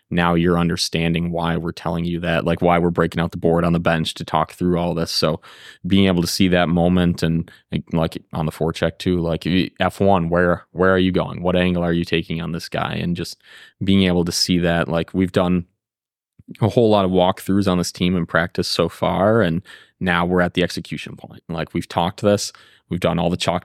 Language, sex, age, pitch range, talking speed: English, male, 20-39, 85-90 Hz, 225 wpm